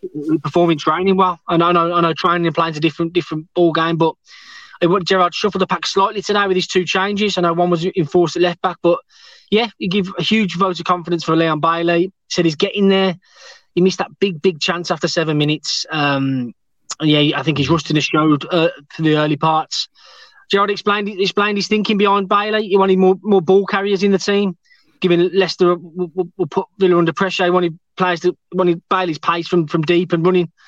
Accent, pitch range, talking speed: British, 165-190 Hz, 220 wpm